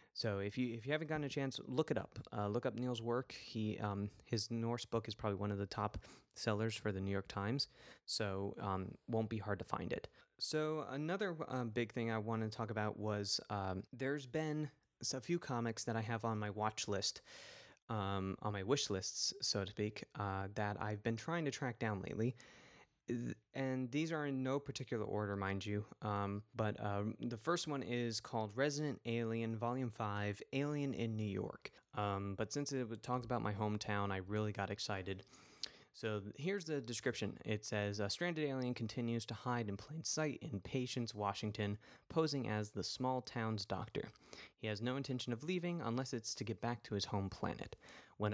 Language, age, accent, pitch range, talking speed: English, 20-39, American, 105-130 Hz, 200 wpm